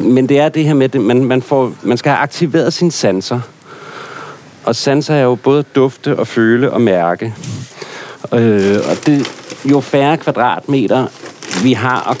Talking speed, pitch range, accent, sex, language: 155 wpm, 100-130 Hz, native, male, Danish